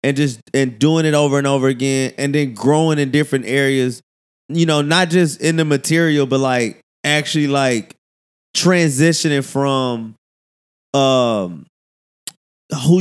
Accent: American